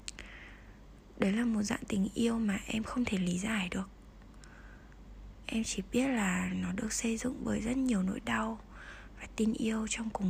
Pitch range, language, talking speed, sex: 180-230 Hz, Vietnamese, 180 wpm, female